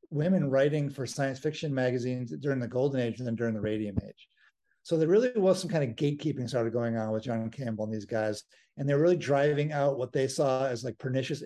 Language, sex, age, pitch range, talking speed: English, male, 50-69, 125-155 Hz, 225 wpm